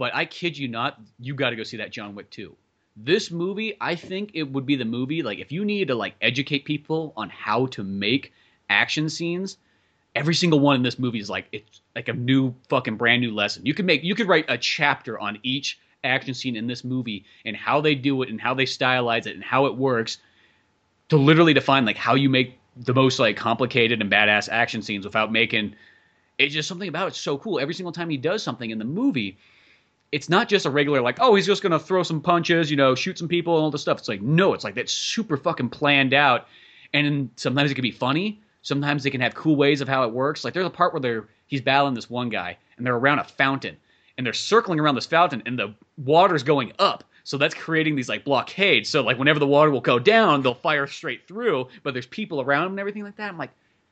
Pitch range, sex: 120-165 Hz, male